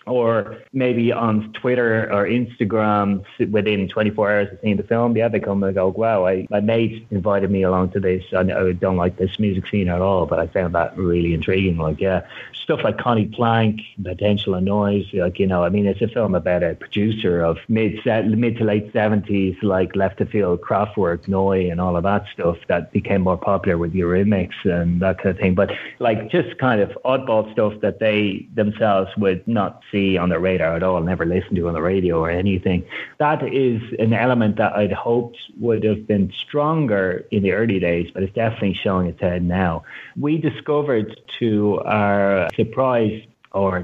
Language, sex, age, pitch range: English, male, 30-49, 95-115 Hz